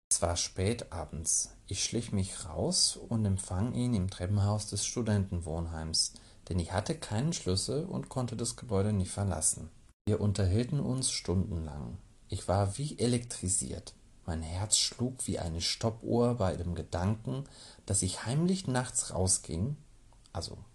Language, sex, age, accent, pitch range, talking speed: German, male, 40-59, German, 90-115 Hz, 140 wpm